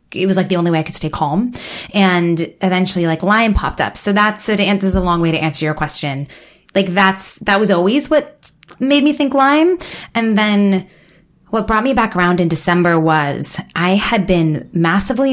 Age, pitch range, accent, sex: 20-39, 165-200 Hz, American, female